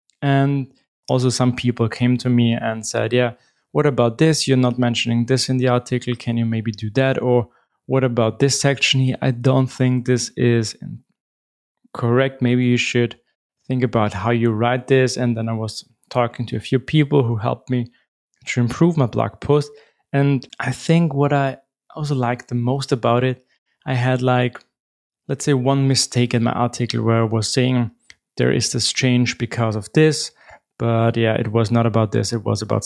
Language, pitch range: English, 115-130 Hz